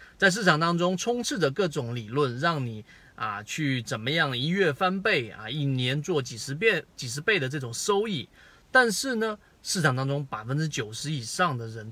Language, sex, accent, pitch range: Chinese, male, native, 125-170 Hz